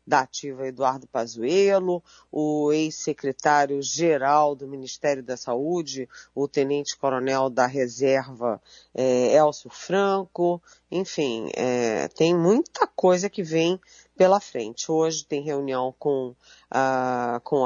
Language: Portuguese